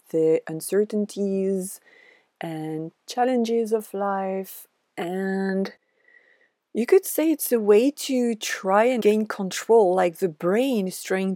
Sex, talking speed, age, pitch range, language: female, 120 wpm, 40-59, 185-235 Hz, English